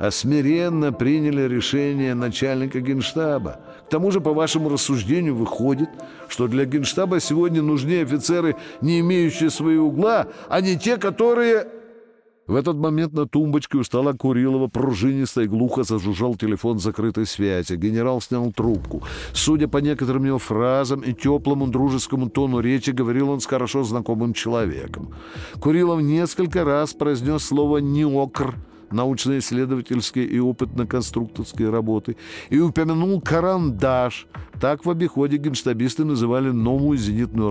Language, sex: Russian, male